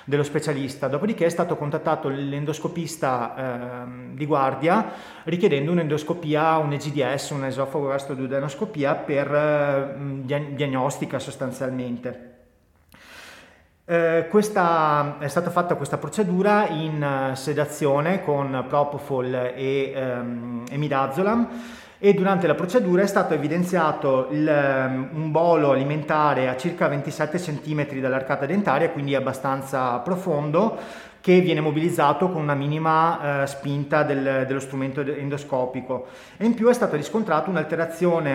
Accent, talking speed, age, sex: native, 110 wpm, 30-49, male